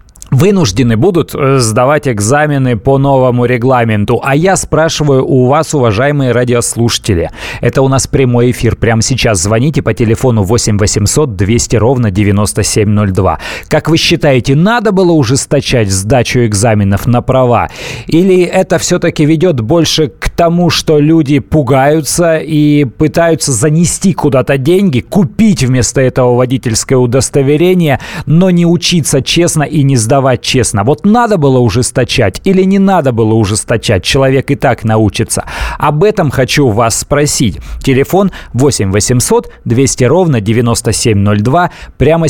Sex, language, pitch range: male, Russian, 115-155 Hz